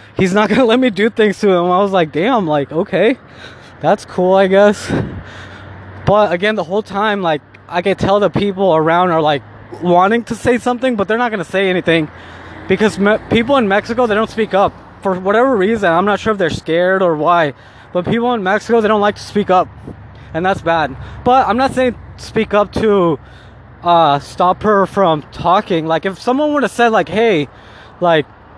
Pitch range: 165-220 Hz